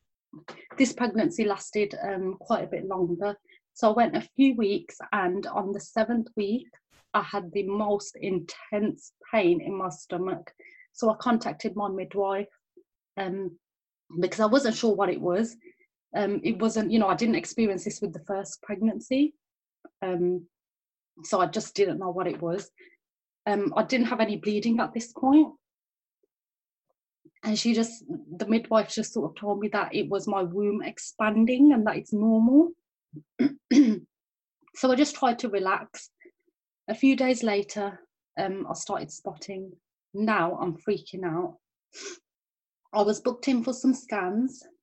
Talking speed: 155 wpm